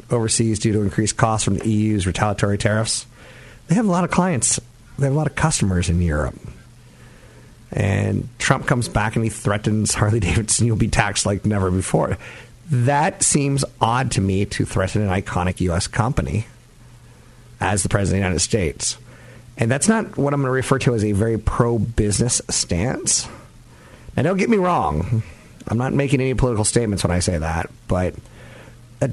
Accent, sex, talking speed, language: American, male, 180 wpm, English